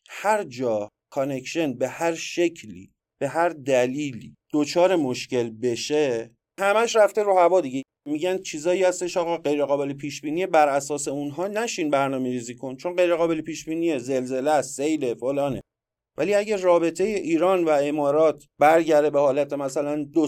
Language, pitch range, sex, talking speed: Persian, 125-180 Hz, male, 150 wpm